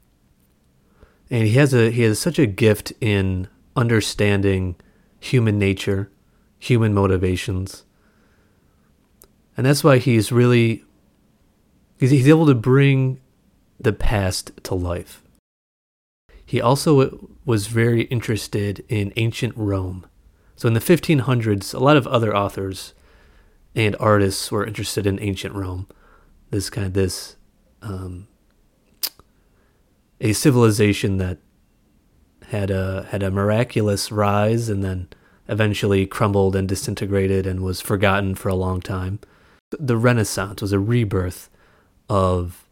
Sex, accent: male, American